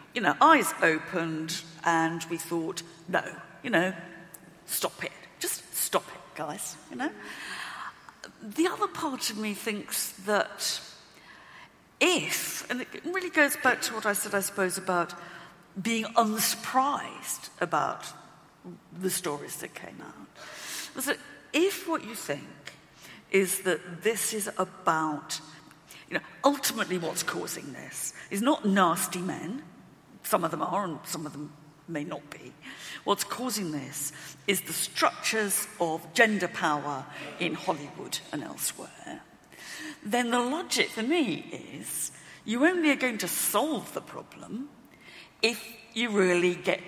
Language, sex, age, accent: English, female, 50-69, British